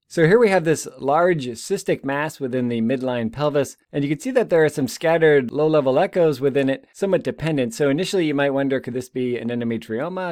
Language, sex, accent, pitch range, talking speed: English, male, American, 125-155 Hz, 215 wpm